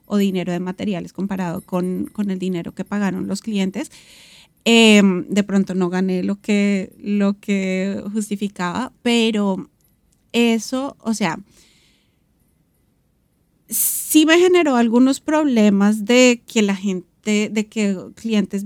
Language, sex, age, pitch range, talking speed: Spanish, female, 30-49, 195-240 Hz, 130 wpm